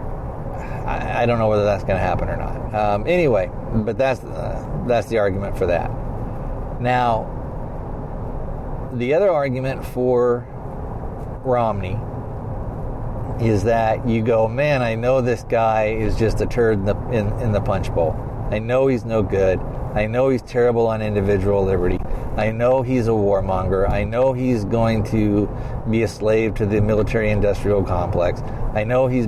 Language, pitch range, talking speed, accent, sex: English, 105-130 Hz, 160 wpm, American, male